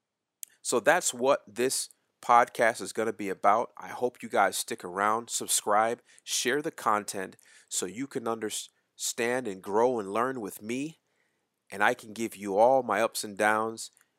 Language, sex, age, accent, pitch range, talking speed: English, male, 30-49, American, 100-120 Hz, 170 wpm